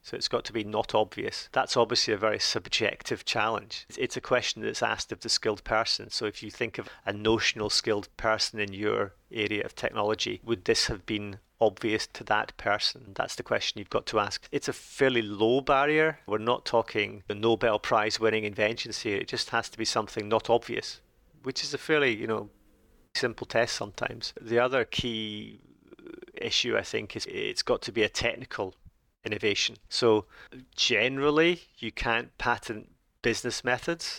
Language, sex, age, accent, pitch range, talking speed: English, male, 30-49, British, 105-120 Hz, 185 wpm